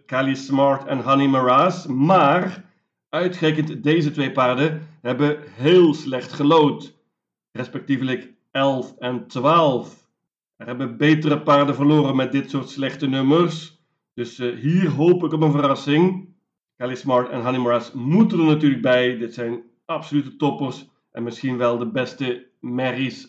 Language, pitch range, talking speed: Dutch, 135-165 Hz, 140 wpm